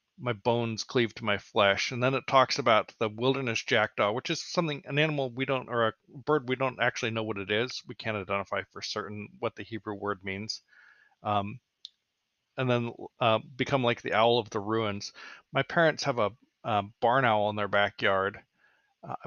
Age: 40-59